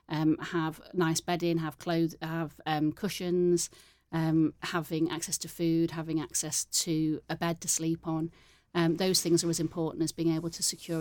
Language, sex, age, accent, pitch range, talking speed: English, female, 30-49, British, 160-175 Hz, 180 wpm